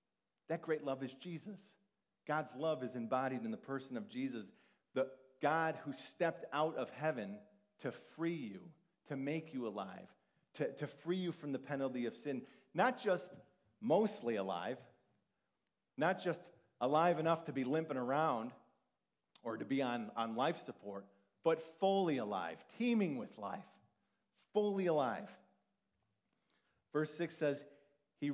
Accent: American